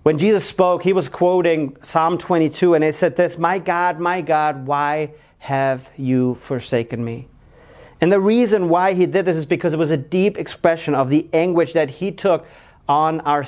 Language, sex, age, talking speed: English, male, 40-59, 190 wpm